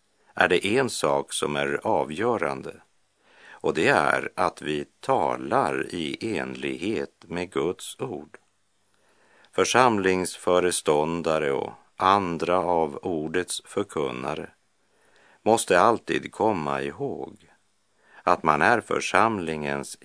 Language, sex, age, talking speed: Czech, male, 50-69, 95 wpm